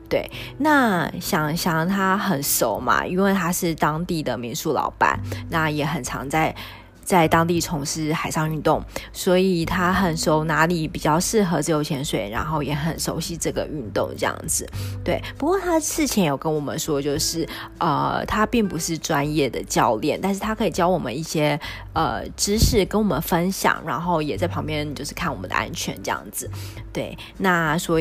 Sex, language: female, Chinese